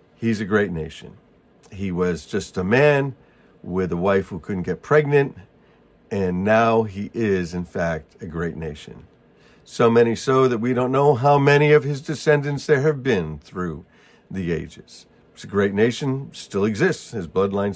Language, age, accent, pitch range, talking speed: English, 50-69, American, 90-140 Hz, 170 wpm